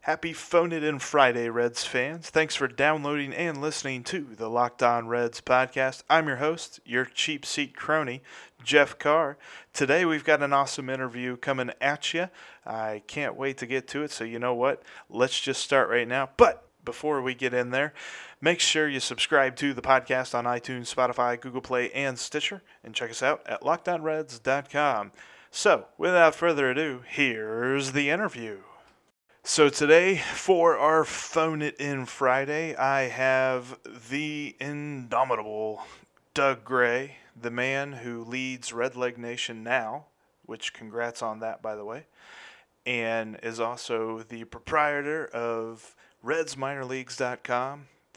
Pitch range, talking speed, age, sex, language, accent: 120-145 Hz, 145 wpm, 30-49, male, English, American